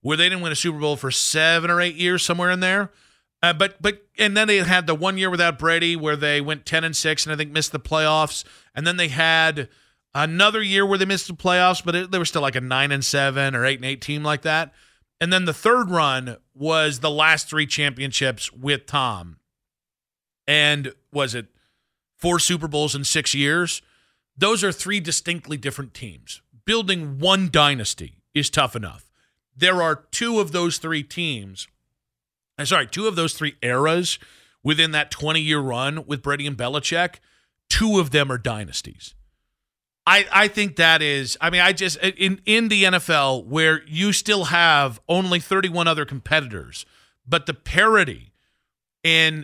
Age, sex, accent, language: 40-59, male, American, English